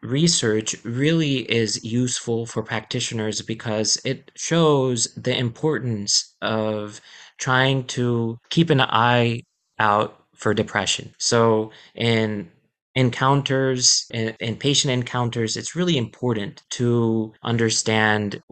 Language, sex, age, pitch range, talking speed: English, male, 30-49, 110-130 Hz, 100 wpm